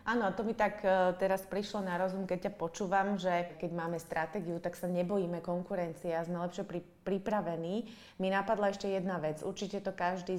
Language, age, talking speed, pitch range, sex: Slovak, 20-39, 185 wpm, 175-200 Hz, female